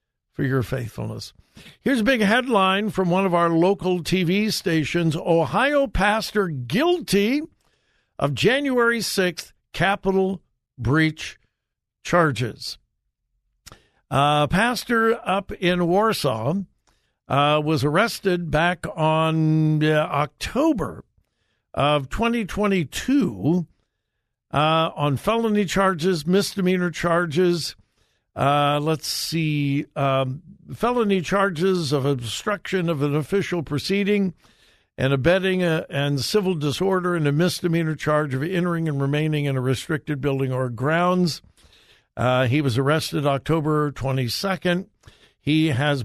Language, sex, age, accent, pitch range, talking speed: English, male, 60-79, American, 140-190 Hz, 105 wpm